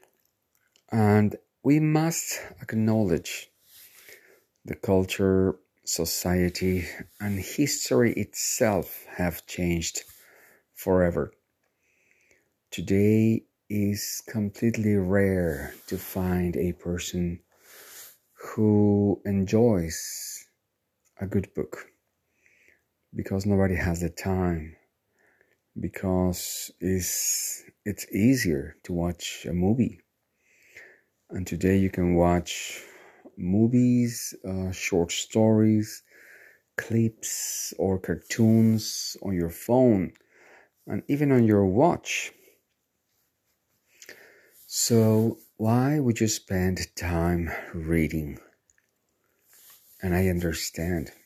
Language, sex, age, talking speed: English, male, 50-69, 80 wpm